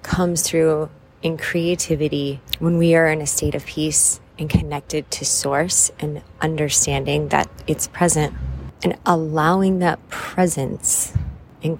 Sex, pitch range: female, 145-175 Hz